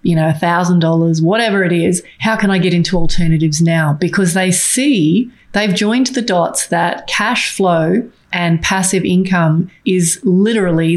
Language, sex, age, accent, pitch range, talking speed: English, female, 30-49, Australian, 165-195 Hz, 160 wpm